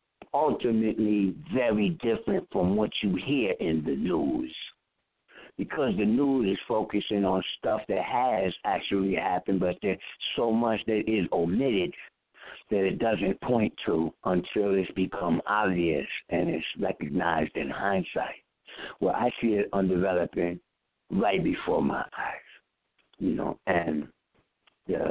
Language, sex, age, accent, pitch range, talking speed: English, male, 60-79, American, 95-115 Hz, 130 wpm